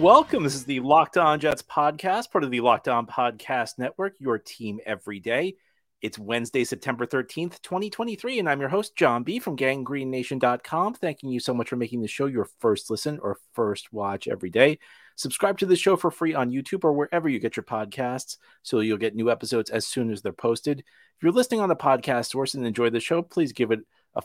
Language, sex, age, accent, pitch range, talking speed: English, male, 30-49, American, 120-160 Hz, 215 wpm